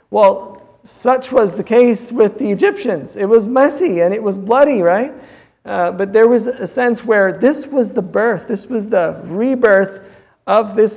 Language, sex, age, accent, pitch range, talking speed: English, male, 50-69, American, 170-225 Hz, 180 wpm